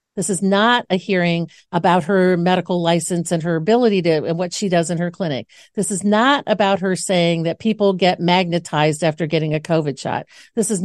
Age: 50-69